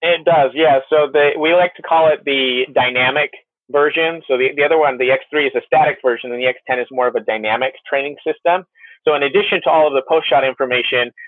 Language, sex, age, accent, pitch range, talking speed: English, male, 30-49, American, 130-170 Hz, 230 wpm